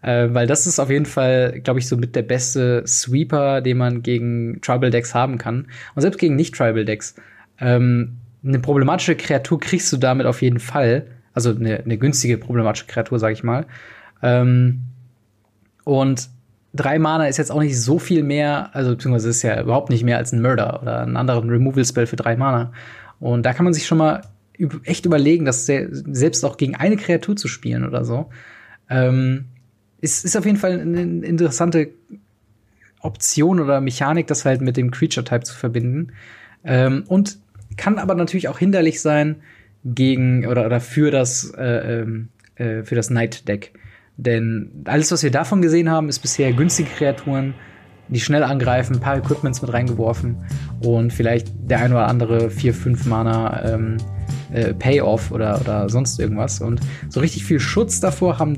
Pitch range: 115-145 Hz